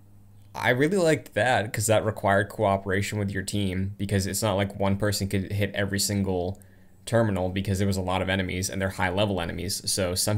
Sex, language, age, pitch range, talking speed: male, English, 20-39, 95-105 Hz, 210 wpm